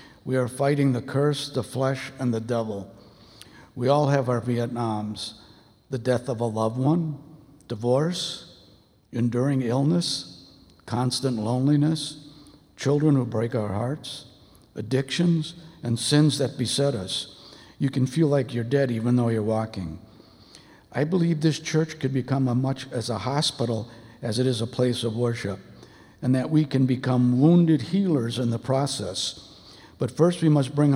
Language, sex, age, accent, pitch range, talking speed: English, male, 60-79, American, 115-140 Hz, 155 wpm